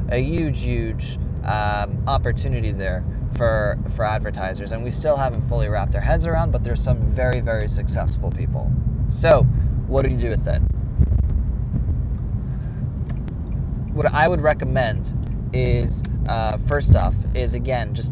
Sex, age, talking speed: male, 20-39, 140 wpm